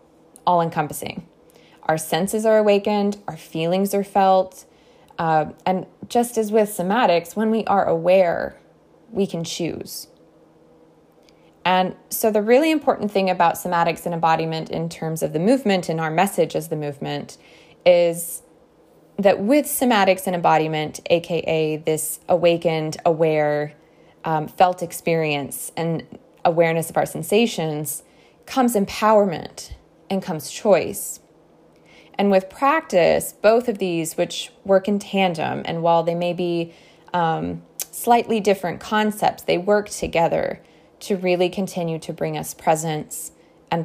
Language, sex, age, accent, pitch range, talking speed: English, female, 20-39, American, 160-200 Hz, 135 wpm